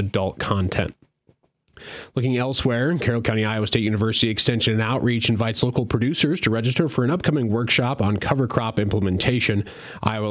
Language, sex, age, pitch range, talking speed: English, male, 30-49, 105-130 Hz, 150 wpm